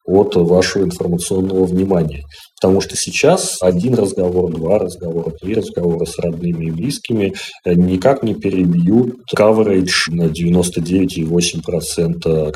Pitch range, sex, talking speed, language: 80-95 Hz, male, 110 wpm, Russian